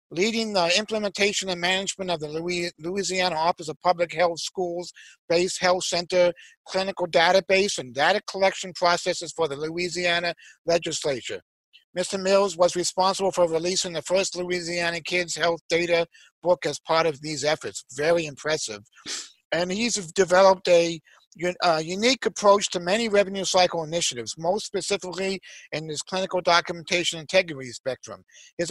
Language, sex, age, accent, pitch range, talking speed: English, male, 50-69, American, 170-195 Hz, 140 wpm